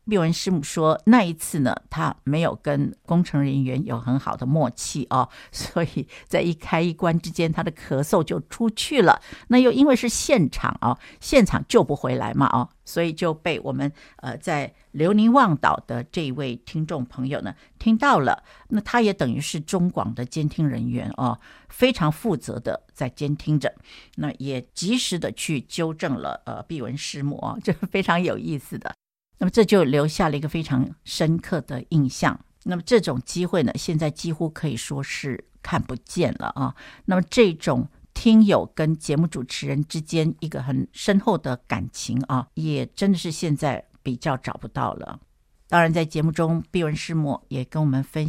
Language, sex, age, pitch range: Chinese, female, 60-79, 140-180 Hz